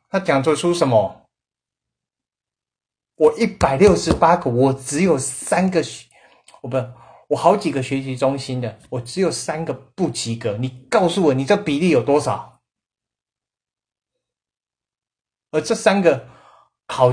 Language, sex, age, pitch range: Chinese, male, 30-49, 115-145 Hz